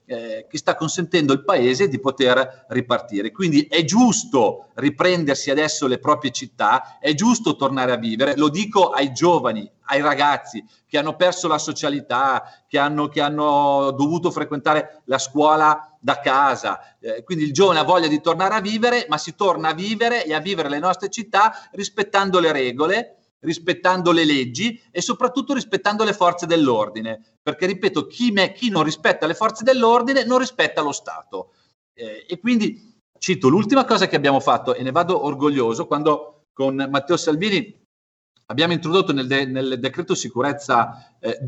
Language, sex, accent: Italian, male, native